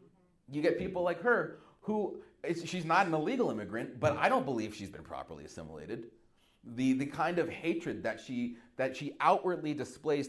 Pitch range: 105-150 Hz